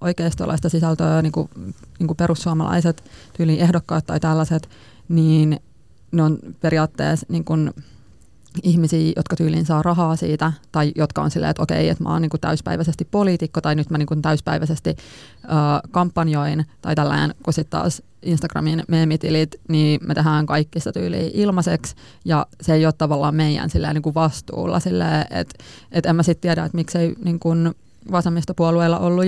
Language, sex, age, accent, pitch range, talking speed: Finnish, female, 20-39, native, 155-170 Hz, 155 wpm